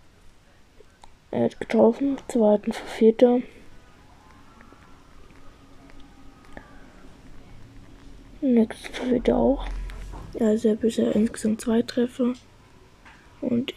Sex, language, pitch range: female, German, 220-265 Hz